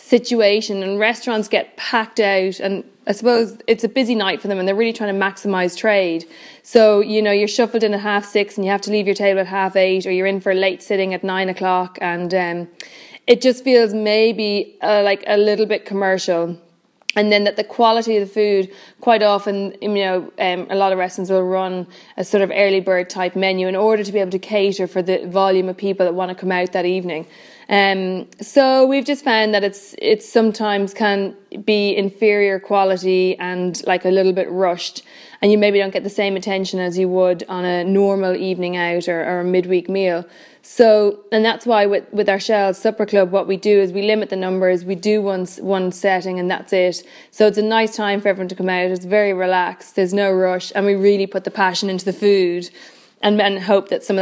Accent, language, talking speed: Irish, English, 230 wpm